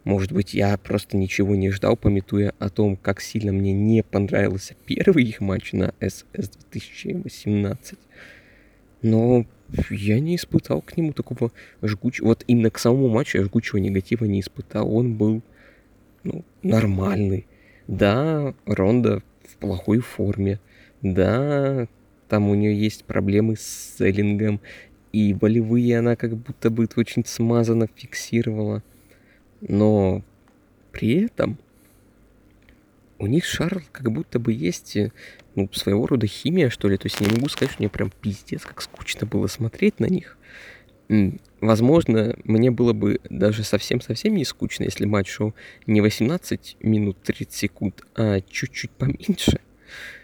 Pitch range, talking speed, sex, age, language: 100-120 Hz, 135 wpm, male, 20-39, Russian